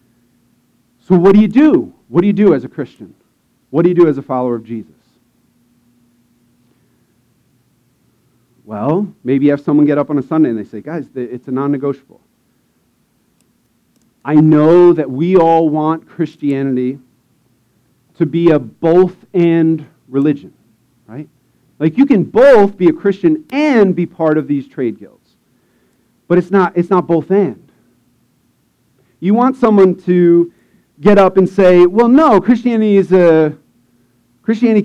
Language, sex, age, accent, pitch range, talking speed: English, male, 40-59, American, 130-200 Hz, 145 wpm